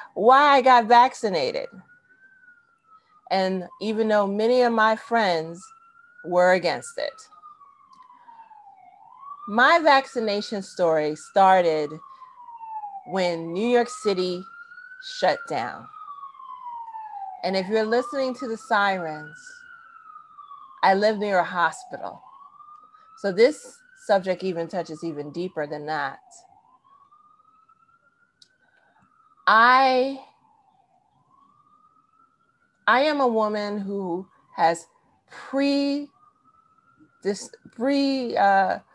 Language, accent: English, American